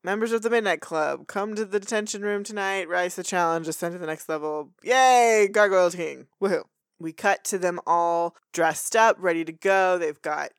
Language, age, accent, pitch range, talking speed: English, 20-39, American, 165-215 Hz, 200 wpm